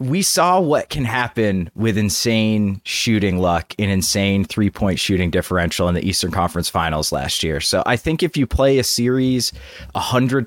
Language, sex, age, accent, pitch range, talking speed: English, male, 30-49, American, 95-120 Hz, 180 wpm